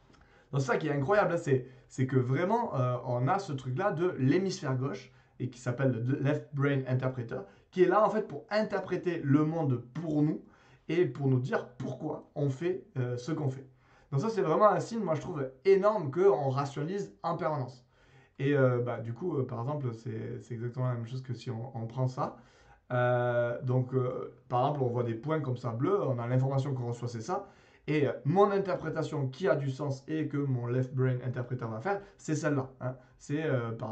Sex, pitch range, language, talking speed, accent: male, 125-155 Hz, French, 210 wpm, French